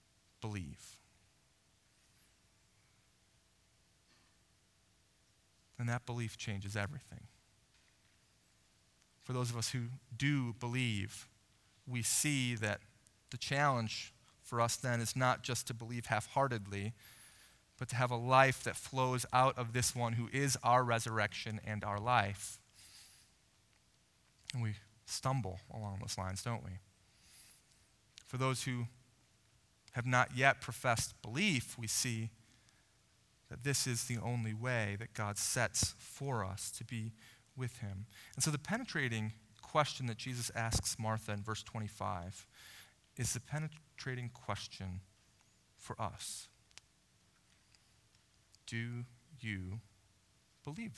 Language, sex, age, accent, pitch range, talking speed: English, male, 30-49, American, 105-125 Hz, 120 wpm